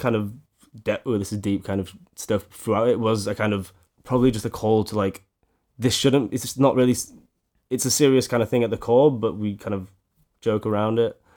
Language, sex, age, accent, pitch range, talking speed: English, male, 10-29, British, 100-115 Hz, 230 wpm